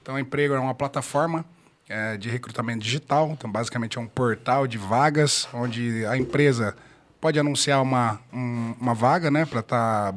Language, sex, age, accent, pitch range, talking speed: Portuguese, male, 20-39, Brazilian, 120-155 Hz, 170 wpm